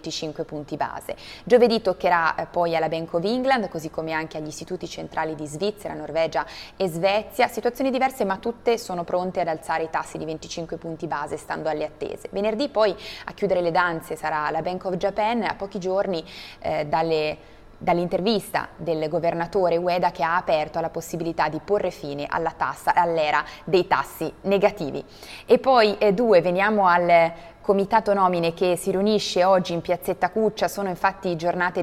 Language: Italian